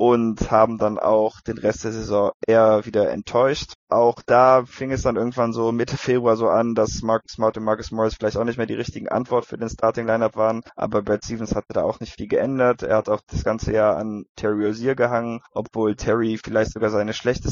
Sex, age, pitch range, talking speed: male, 20-39, 110-120 Hz, 220 wpm